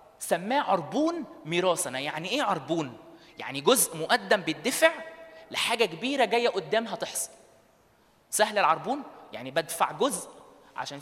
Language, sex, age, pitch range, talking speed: Arabic, male, 20-39, 165-240 Hz, 115 wpm